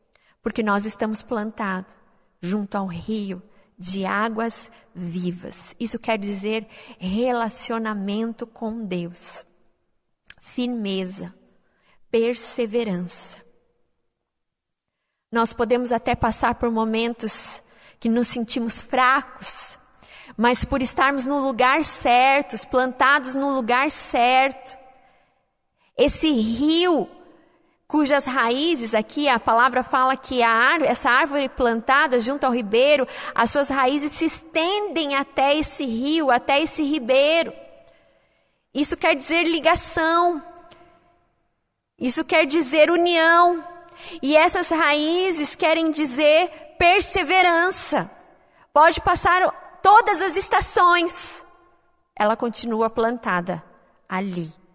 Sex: female